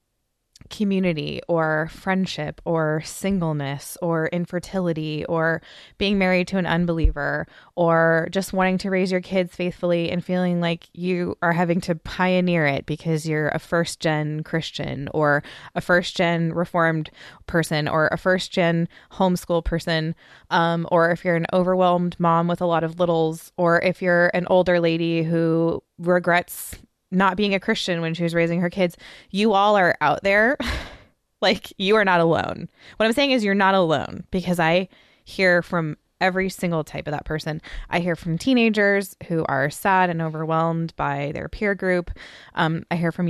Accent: American